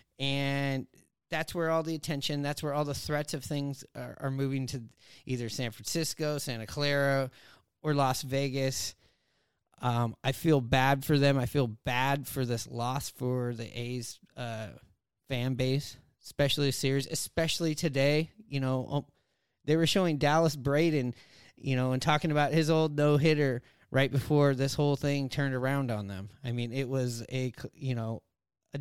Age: 30-49